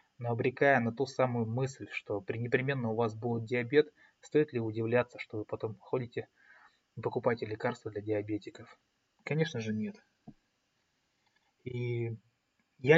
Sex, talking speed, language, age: male, 130 wpm, Russian, 20-39